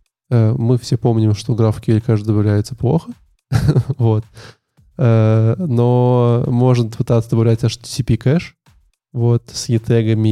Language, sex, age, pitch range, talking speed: Russian, male, 20-39, 110-130 Hz, 100 wpm